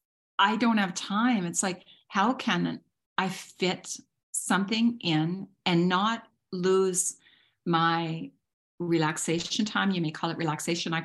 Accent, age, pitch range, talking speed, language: American, 40-59, 165-205 Hz, 130 wpm, English